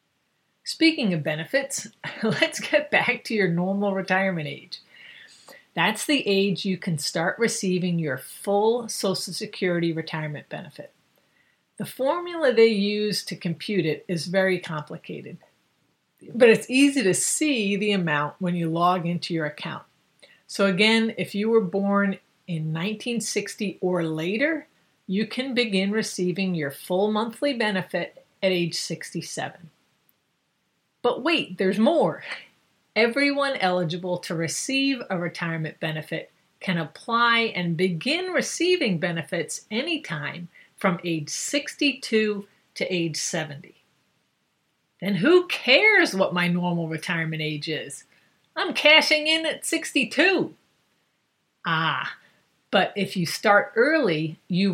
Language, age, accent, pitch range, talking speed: English, 50-69, American, 175-235 Hz, 125 wpm